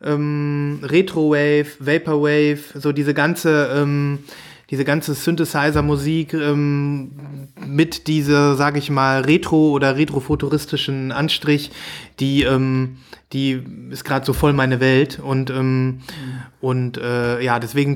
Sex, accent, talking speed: male, German, 120 wpm